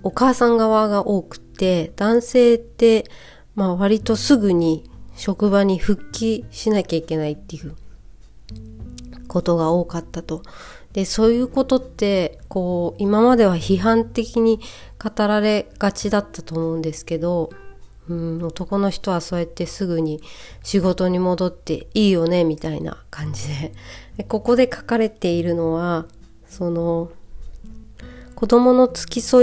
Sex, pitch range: female, 170-220 Hz